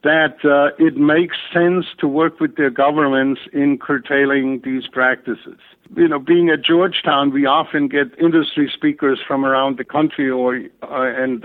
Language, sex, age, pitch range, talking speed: English, male, 60-79, 135-165 Hz, 160 wpm